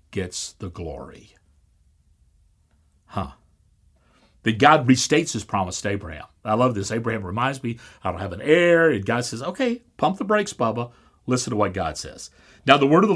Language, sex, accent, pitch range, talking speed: English, male, American, 85-125 Hz, 180 wpm